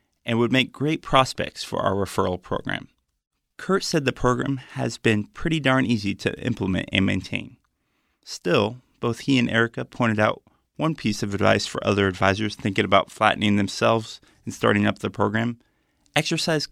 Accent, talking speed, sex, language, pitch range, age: American, 165 wpm, male, English, 105-125 Hz, 30-49